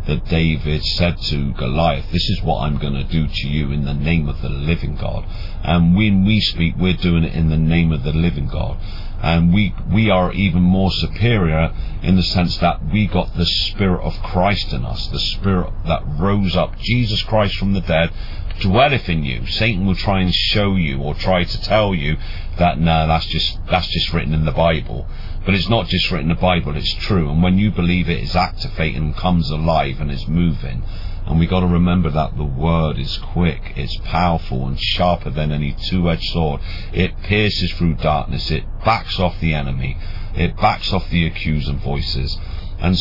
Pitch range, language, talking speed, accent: 75-95 Hz, English, 200 wpm, British